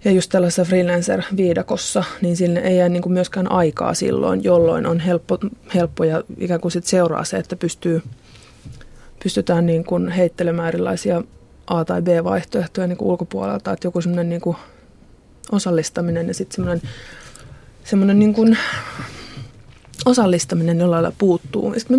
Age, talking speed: 20-39, 145 wpm